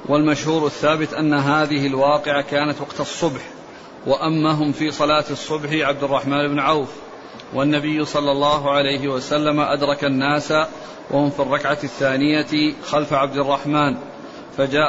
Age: 40-59